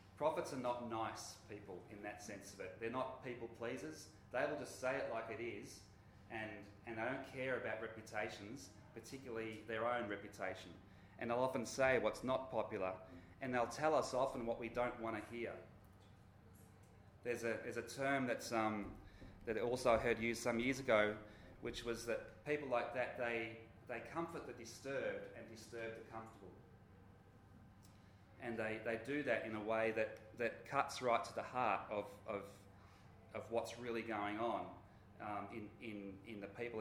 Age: 30-49